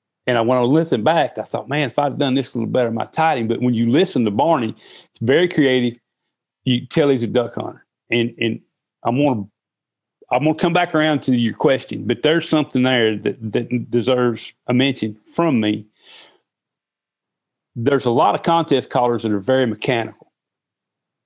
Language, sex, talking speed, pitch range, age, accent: English, male, 195 wpm, 115-145 Hz, 40-59, American